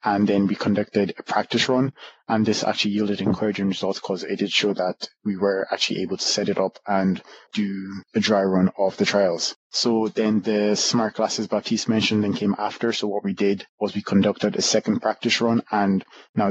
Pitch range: 100-110 Hz